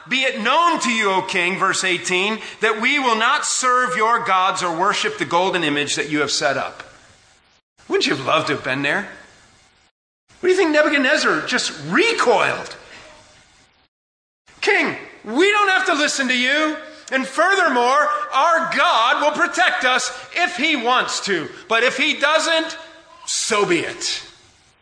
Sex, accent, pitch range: male, American, 190-300 Hz